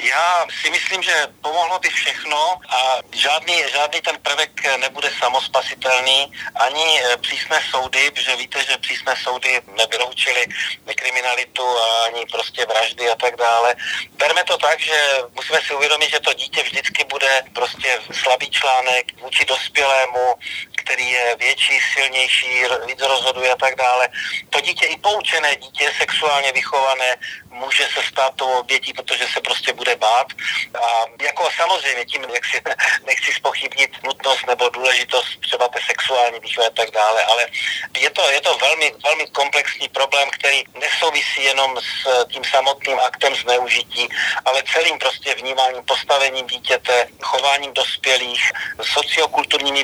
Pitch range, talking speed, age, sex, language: 125-140 Hz, 140 wpm, 40-59, male, Slovak